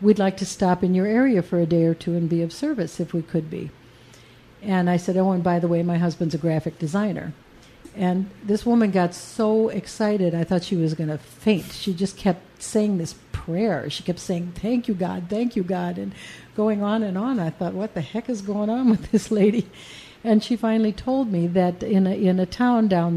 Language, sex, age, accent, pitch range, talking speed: English, female, 60-79, American, 175-205 Hz, 230 wpm